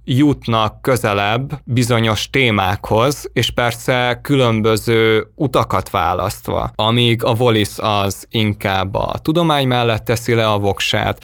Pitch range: 105-130 Hz